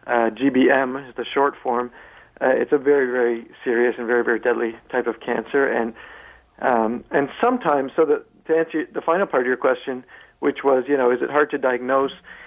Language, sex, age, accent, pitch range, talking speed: English, male, 50-69, American, 130-150 Hz, 200 wpm